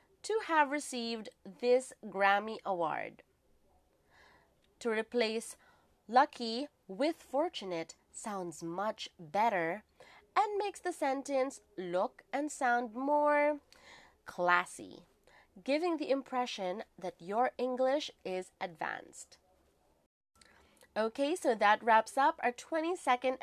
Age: 30-49